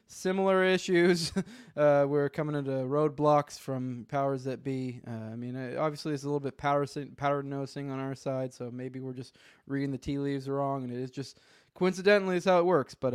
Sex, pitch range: male, 130-165 Hz